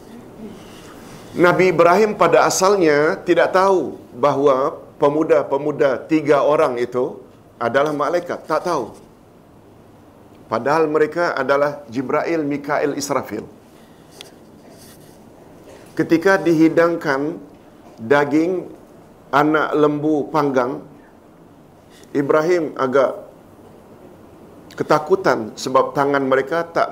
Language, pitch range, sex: Malayalam, 135-165 Hz, male